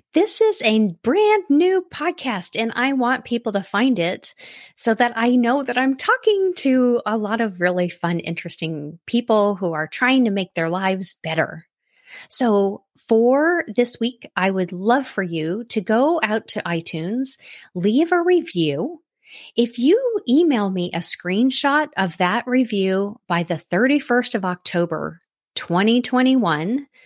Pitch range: 180-260 Hz